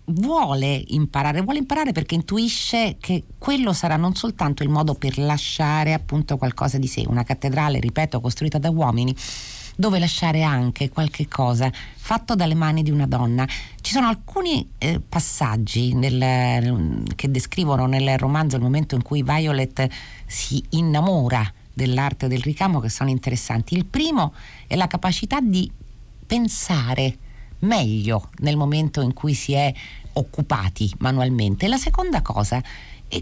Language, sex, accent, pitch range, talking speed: Italian, female, native, 120-175 Hz, 140 wpm